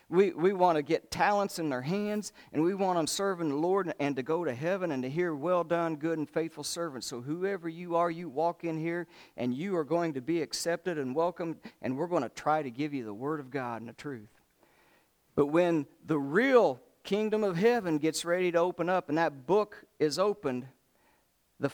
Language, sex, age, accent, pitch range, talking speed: English, male, 50-69, American, 135-175 Hz, 225 wpm